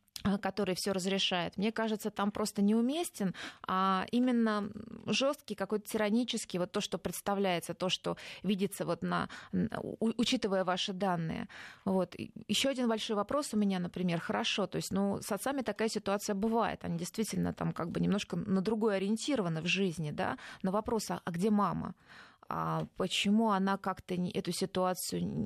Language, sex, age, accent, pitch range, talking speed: Russian, female, 20-39, native, 180-215 Hz, 150 wpm